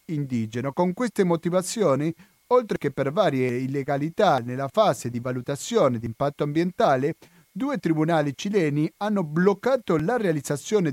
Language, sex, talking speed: Italian, male, 120 wpm